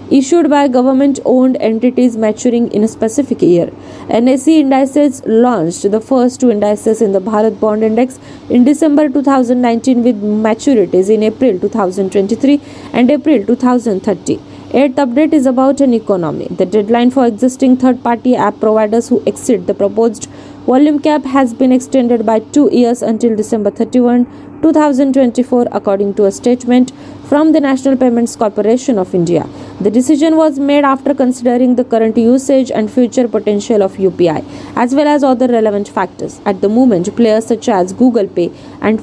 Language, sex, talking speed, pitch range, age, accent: Marathi, female, 160 wpm, 215-270 Hz, 20-39, native